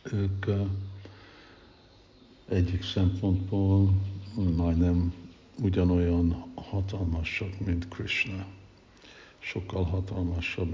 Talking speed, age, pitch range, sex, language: 55 wpm, 60-79, 90-100 Hz, male, Hungarian